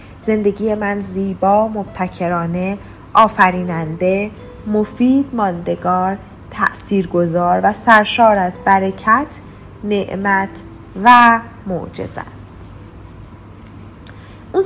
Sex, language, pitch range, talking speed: female, Persian, 185-235 Hz, 70 wpm